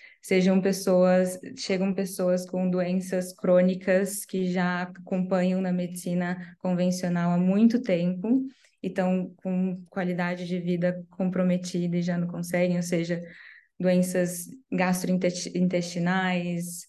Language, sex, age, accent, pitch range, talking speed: Portuguese, female, 10-29, Brazilian, 180-210 Hz, 110 wpm